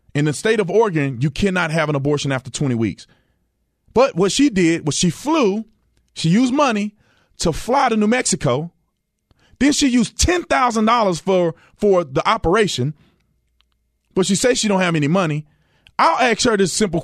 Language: English